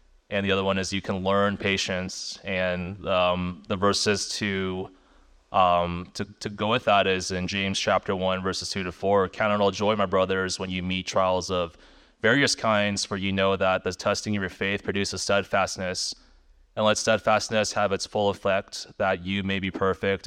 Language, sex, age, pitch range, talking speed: English, male, 20-39, 95-105 Hz, 190 wpm